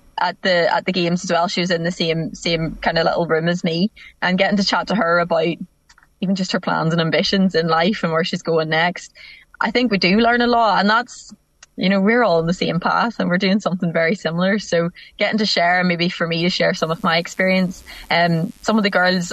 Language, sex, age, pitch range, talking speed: English, female, 20-39, 170-200 Hz, 250 wpm